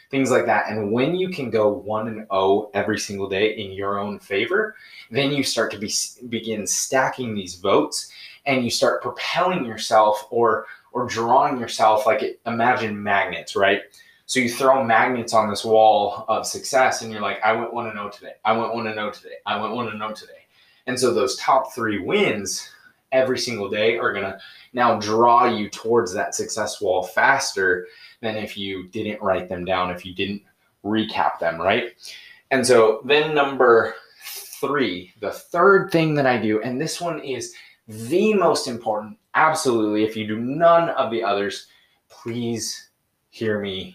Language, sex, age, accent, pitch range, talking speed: English, male, 20-39, American, 105-130 Hz, 180 wpm